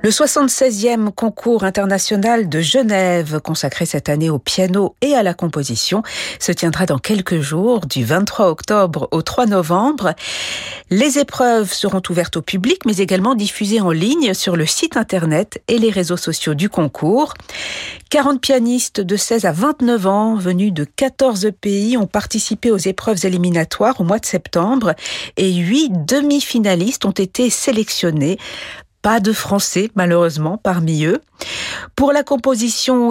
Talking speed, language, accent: 150 wpm, French, French